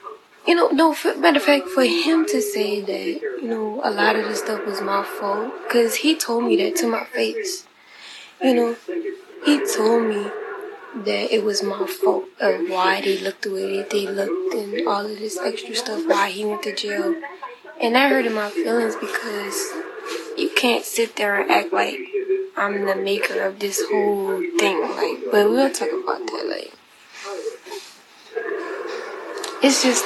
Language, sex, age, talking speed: English, female, 10-29, 180 wpm